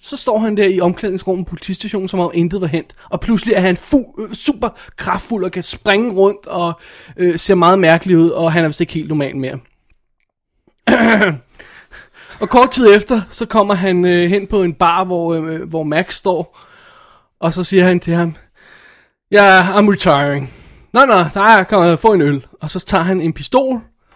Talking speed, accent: 200 wpm, native